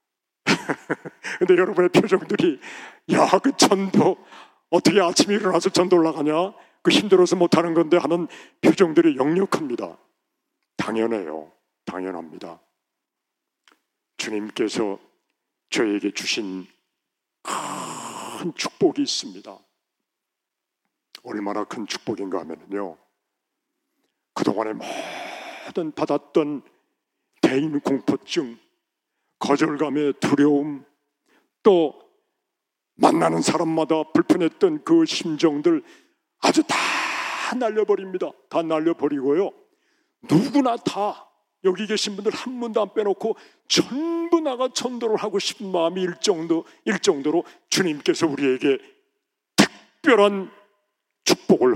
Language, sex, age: Korean, male, 40-59